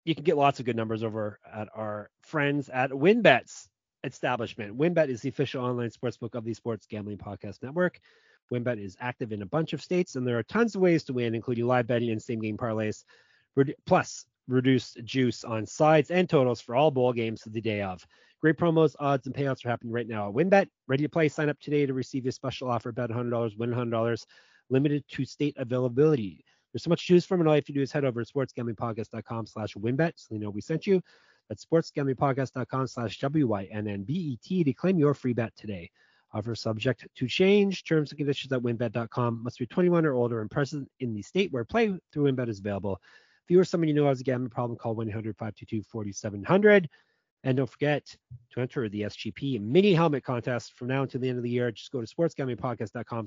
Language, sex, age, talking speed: English, male, 30-49, 210 wpm